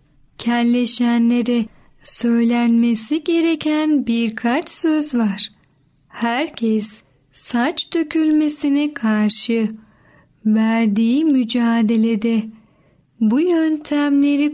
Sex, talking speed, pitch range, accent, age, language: female, 60 wpm, 220-280 Hz, native, 10-29, Turkish